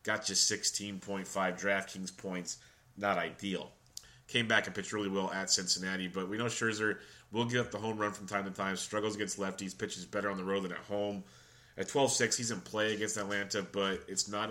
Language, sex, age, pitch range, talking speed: English, male, 30-49, 95-105 Hz, 205 wpm